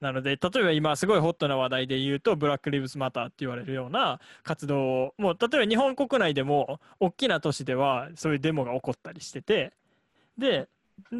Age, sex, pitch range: 20-39, male, 135-185 Hz